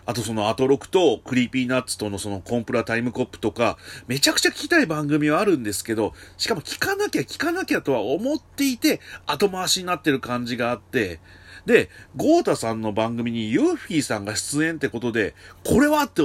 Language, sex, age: Japanese, male, 30-49